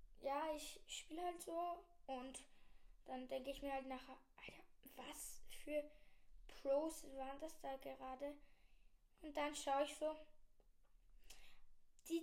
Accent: German